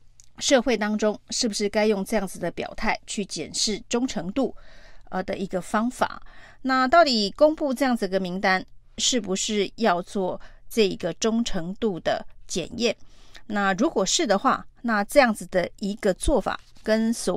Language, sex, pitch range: Chinese, female, 185-235 Hz